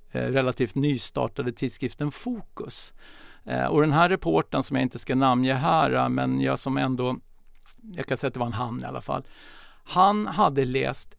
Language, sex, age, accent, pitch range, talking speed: English, male, 50-69, Swedish, 125-150 Hz, 170 wpm